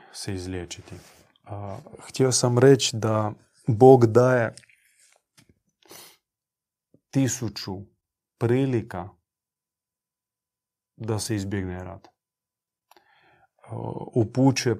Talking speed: 60 wpm